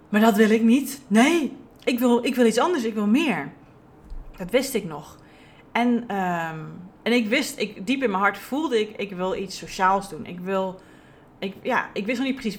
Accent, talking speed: Dutch, 215 wpm